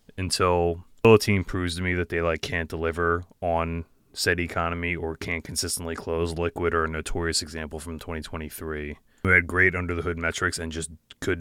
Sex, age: male, 20-39